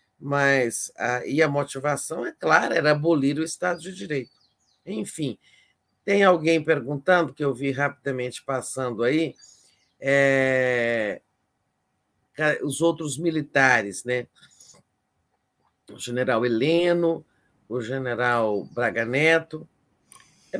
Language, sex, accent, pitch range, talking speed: Portuguese, male, Brazilian, 135-180 Hz, 100 wpm